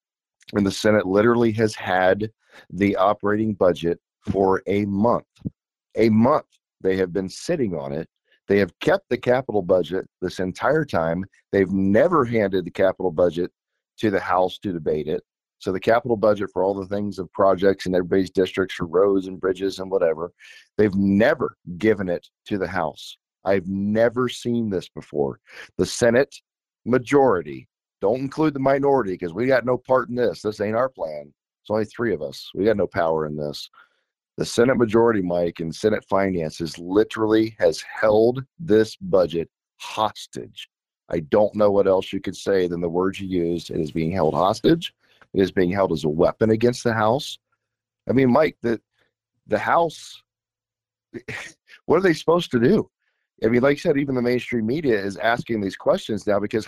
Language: English